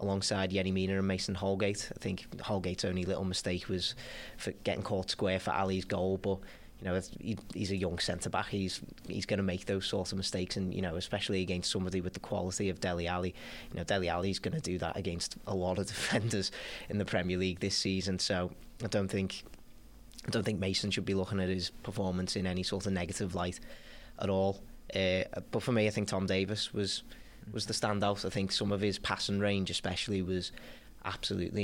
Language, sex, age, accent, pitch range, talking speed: English, male, 20-39, British, 95-100 Hz, 210 wpm